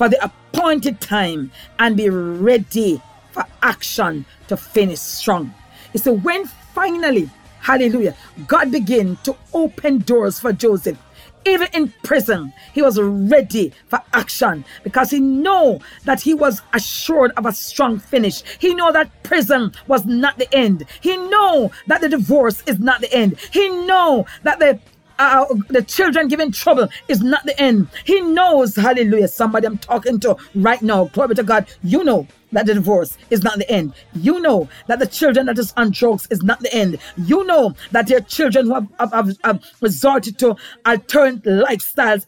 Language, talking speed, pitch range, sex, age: English, 170 wpm, 215-285 Hz, female, 40-59